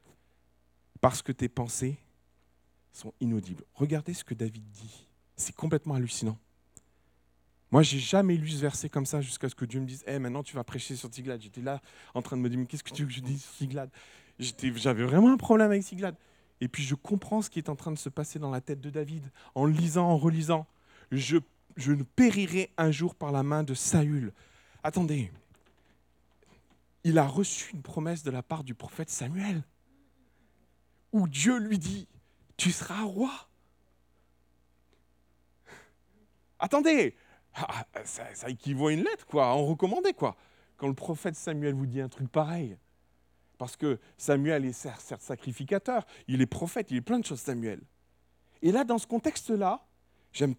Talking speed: 190 wpm